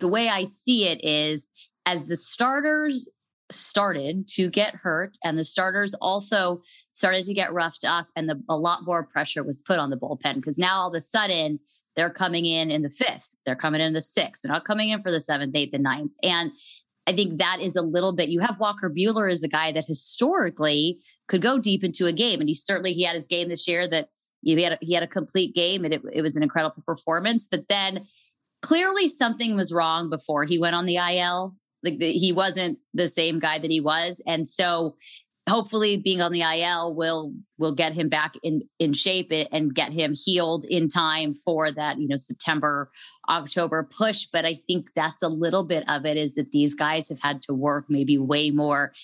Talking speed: 220 wpm